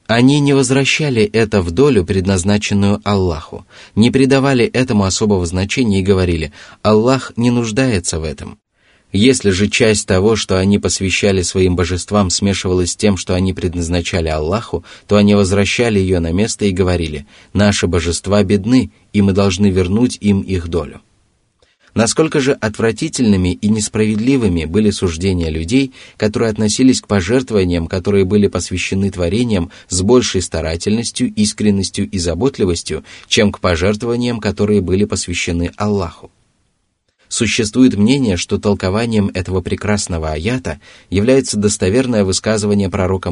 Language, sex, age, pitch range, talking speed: Russian, male, 20-39, 90-115 Hz, 130 wpm